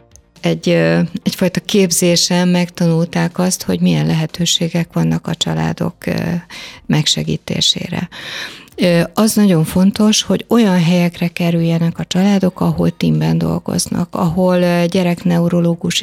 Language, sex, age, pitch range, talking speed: Hungarian, female, 30-49, 160-180 Hz, 95 wpm